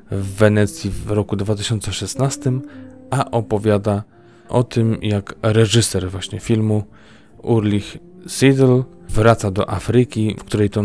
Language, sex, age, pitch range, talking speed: Polish, male, 20-39, 105-115 Hz, 115 wpm